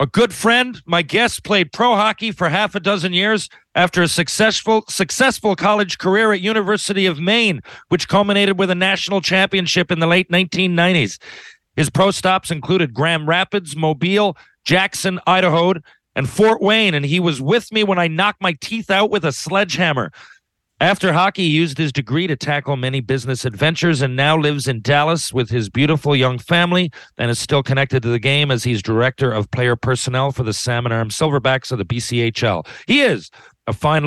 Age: 40-59